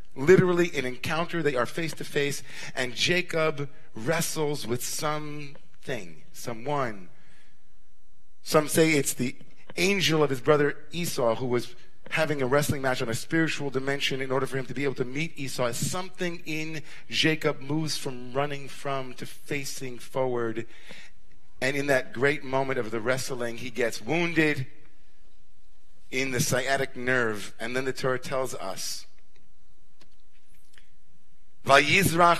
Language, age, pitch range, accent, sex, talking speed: English, 40-59, 125-155 Hz, American, male, 140 wpm